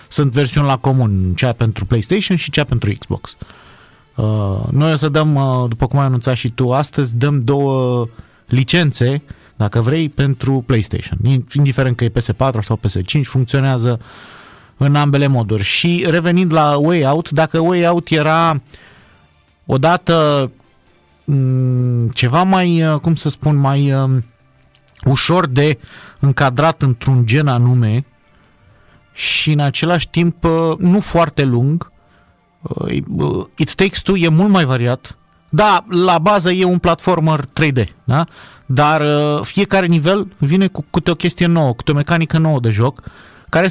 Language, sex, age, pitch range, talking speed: Romanian, male, 30-49, 125-165 Hz, 135 wpm